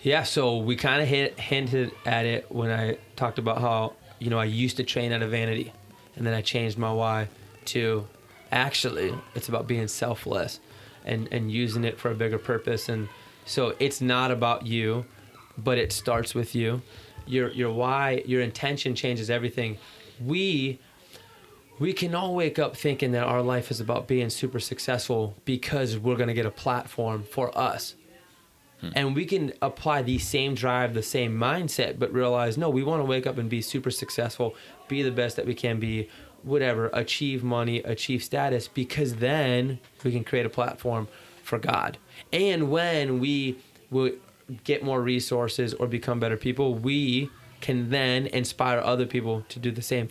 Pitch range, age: 115-130 Hz, 20-39